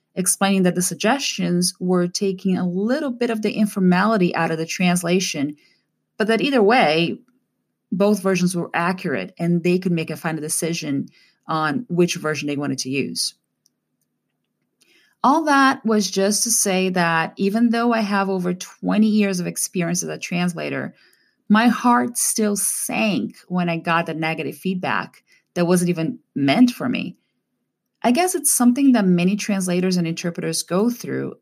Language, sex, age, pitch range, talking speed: English, female, 30-49, 170-215 Hz, 160 wpm